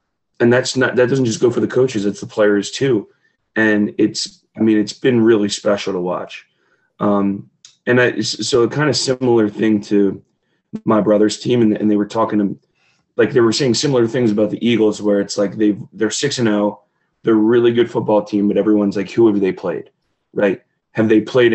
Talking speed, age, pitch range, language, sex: 215 wpm, 20-39, 100-120 Hz, English, male